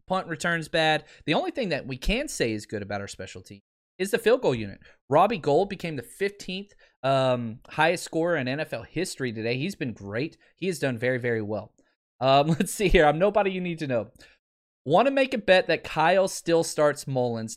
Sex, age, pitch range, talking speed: male, 20-39, 125-190 Hz, 210 wpm